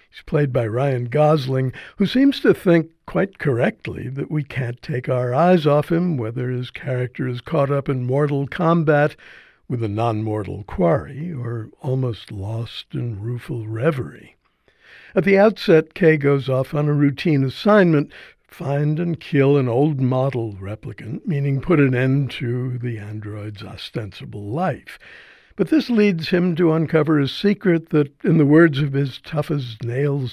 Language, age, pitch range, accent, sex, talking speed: English, 60-79, 125-160 Hz, American, male, 155 wpm